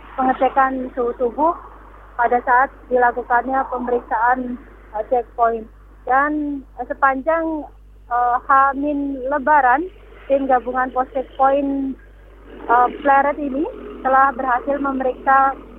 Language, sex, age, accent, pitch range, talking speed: Indonesian, female, 30-49, native, 245-280 Hz, 95 wpm